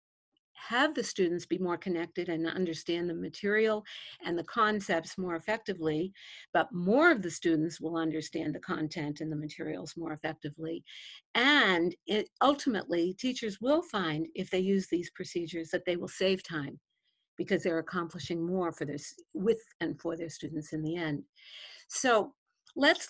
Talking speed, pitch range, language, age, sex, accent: 160 wpm, 165-210 Hz, English, 50-69, female, American